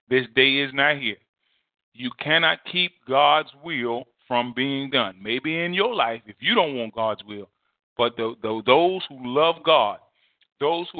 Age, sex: 40-59, male